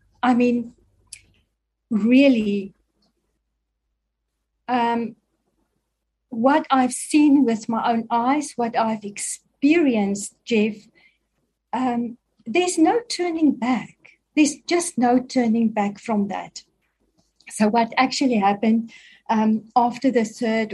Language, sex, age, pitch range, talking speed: English, female, 40-59, 215-280 Hz, 100 wpm